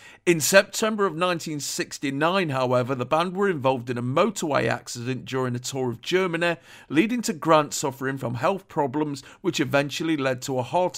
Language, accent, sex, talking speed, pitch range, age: English, British, male, 170 wpm, 125-160 Hz, 50-69